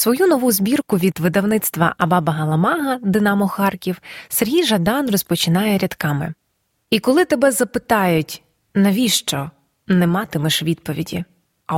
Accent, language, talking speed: native, Ukrainian, 110 wpm